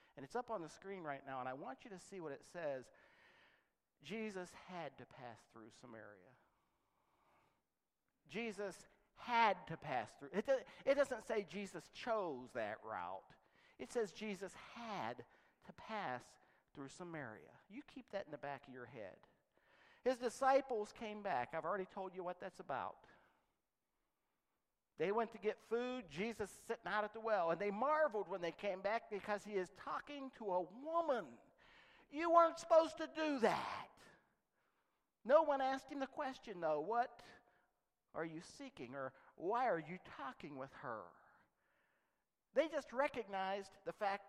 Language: English